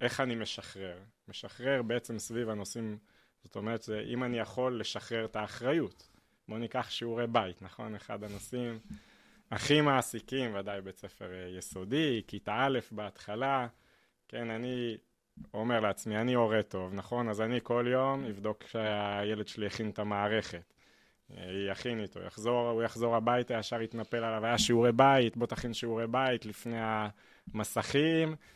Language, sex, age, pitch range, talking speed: Hebrew, male, 20-39, 105-125 Hz, 140 wpm